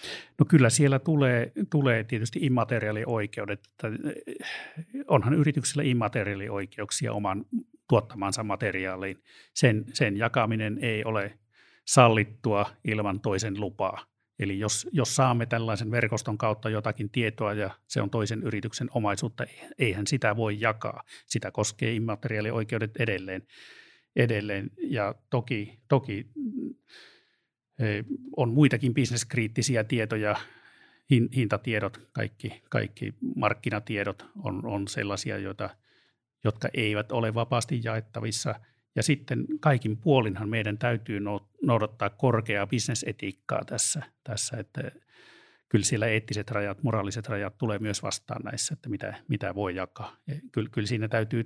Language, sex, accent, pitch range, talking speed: Finnish, male, native, 105-130 Hz, 115 wpm